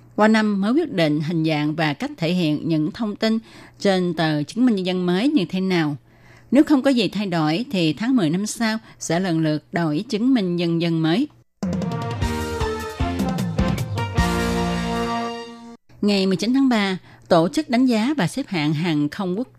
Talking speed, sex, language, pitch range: 180 wpm, female, Vietnamese, 155-220 Hz